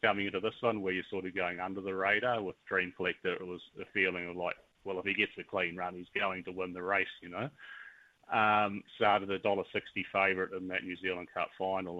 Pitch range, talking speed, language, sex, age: 90-105 Hz, 240 wpm, English, male, 30-49